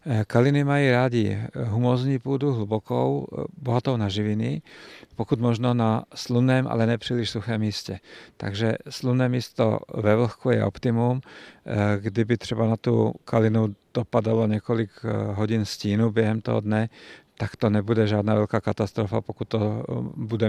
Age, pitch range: 50-69, 105-120 Hz